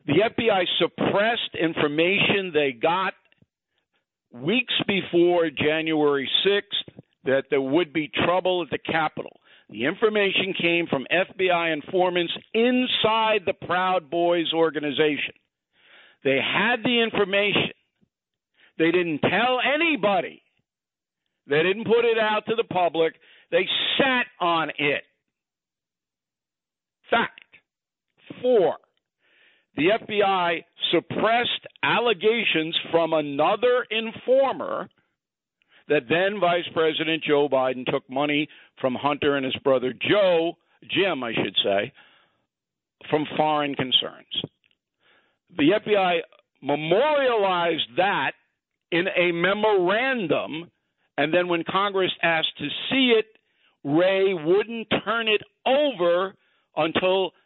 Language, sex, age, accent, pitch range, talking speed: English, male, 50-69, American, 155-215 Hz, 105 wpm